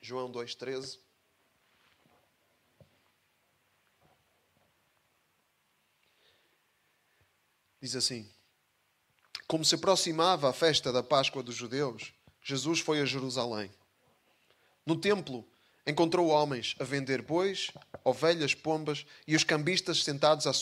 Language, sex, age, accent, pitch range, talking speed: Portuguese, male, 20-39, Brazilian, 130-170 Hz, 85 wpm